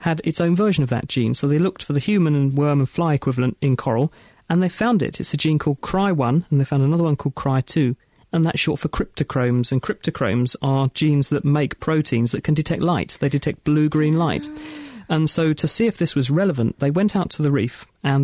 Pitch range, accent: 135-160 Hz, British